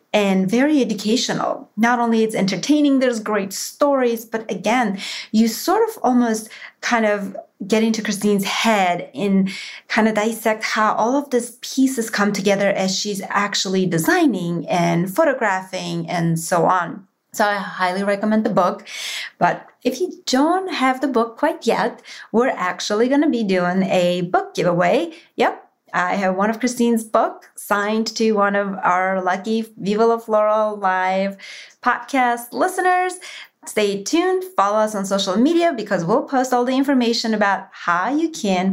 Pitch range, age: 190-250 Hz, 30-49